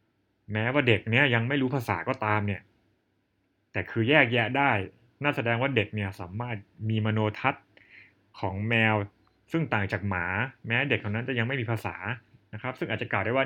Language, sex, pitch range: Thai, male, 100-120 Hz